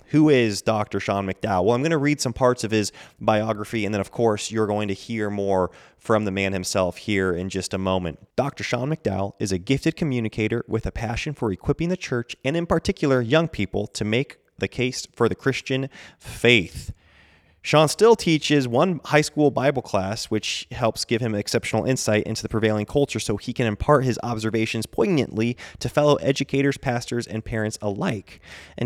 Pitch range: 100-130 Hz